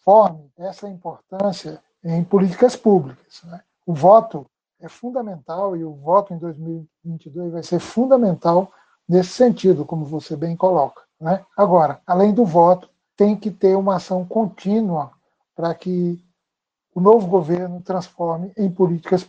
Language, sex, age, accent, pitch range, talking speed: Portuguese, male, 60-79, Brazilian, 165-200 Hz, 135 wpm